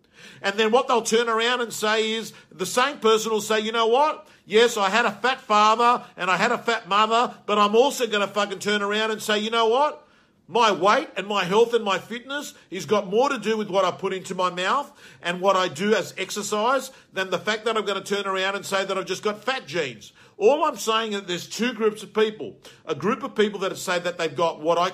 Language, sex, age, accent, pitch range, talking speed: English, male, 50-69, Australian, 180-220 Hz, 255 wpm